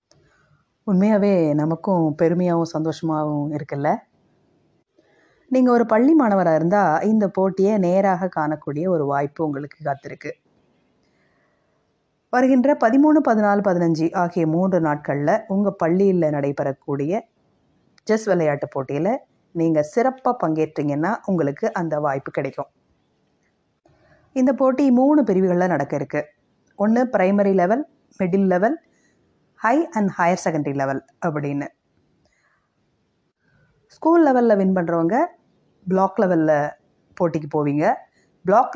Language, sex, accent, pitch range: Tamil, female, native, 155-235 Hz